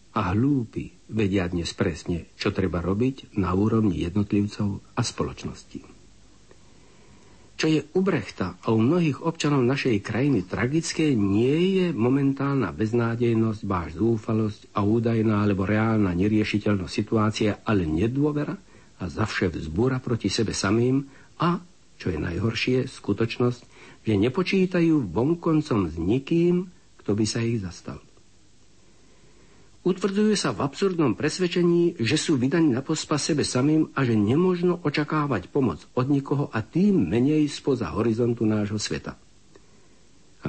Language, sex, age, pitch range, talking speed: Slovak, male, 60-79, 105-145 Hz, 130 wpm